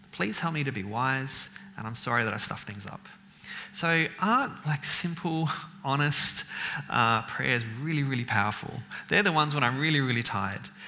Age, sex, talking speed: 30-49, male, 175 wpm